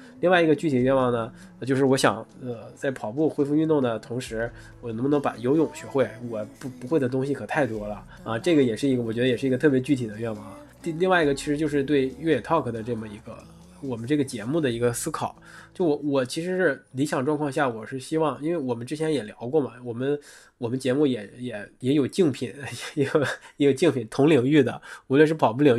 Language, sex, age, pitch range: Chinese, male, 20-39, 120-150 Hz